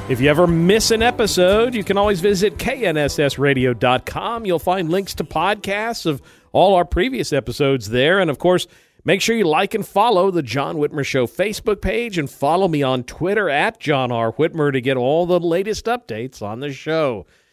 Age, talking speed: 50-69, 190 wpm